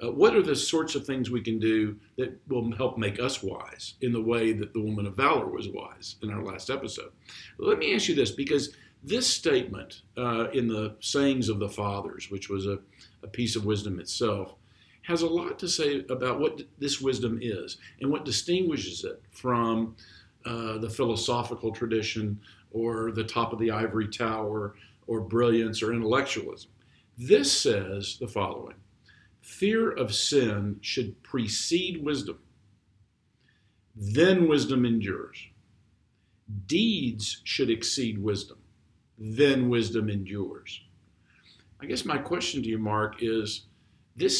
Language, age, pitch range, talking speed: English, 50-69, 105-130 Hz, 150 wpm